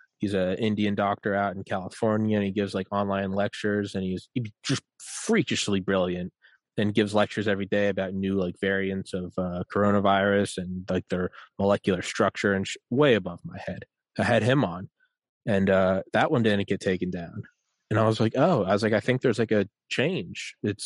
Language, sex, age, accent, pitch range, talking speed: English, male, 20-39, American, 100-125 Hz, 195 wpm